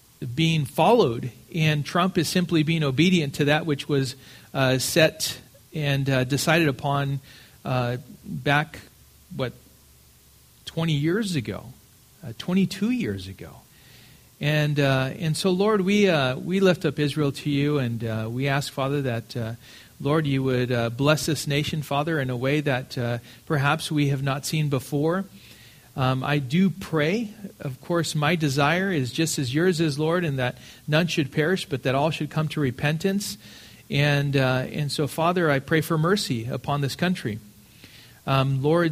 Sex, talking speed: male, 165 wpm